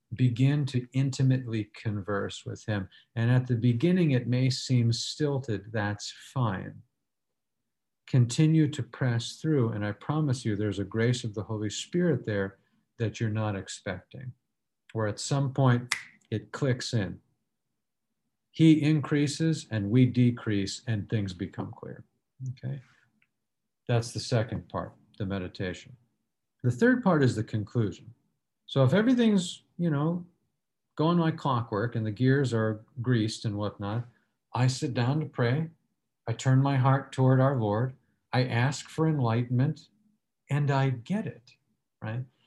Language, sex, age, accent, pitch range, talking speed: English, male, 50-69, American, 110-140 Hz, 145 wpm